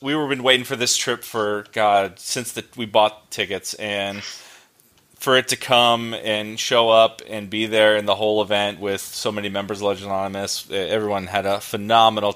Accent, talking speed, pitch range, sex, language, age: American, 195 wpm, 100-115 Hz, male, English, 30-49